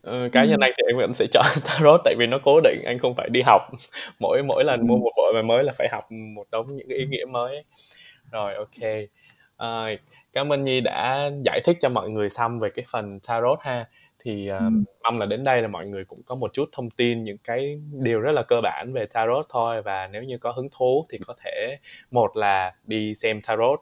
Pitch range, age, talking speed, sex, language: 110-145 Hz, 20-39, 235 wpm, male, Vietnamese